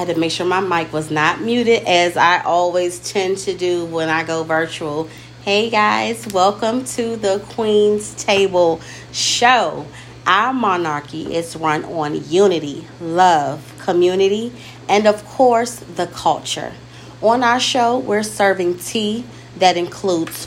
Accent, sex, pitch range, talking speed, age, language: American, female, 165-205 Hz, 140 wpm, 30-49, English